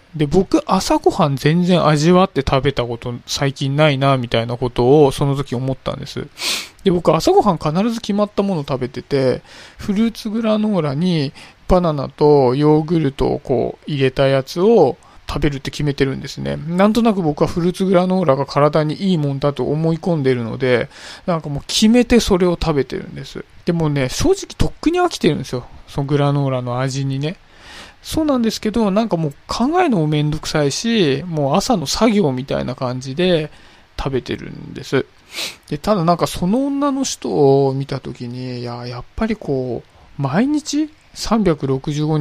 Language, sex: Japanese, male